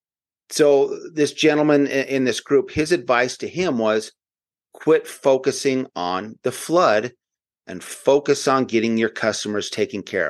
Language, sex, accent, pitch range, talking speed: English, male, American, 110-135 Hz, 140 wpm